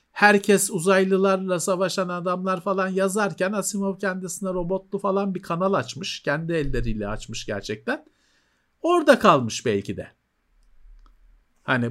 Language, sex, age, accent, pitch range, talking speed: Turkish, male, 50-69, native, 125-205 Hz, 110 wpm